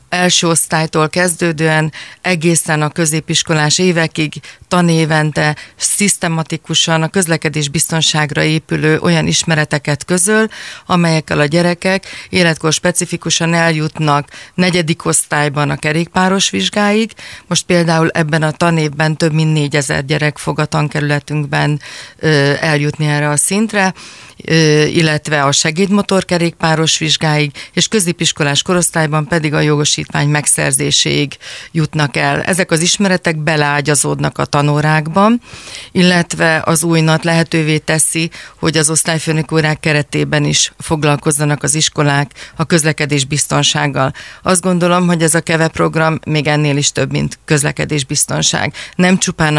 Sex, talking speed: female, 115 wpm